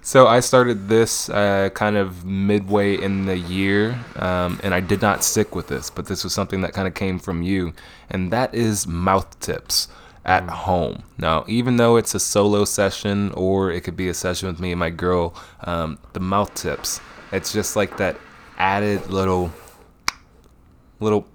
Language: English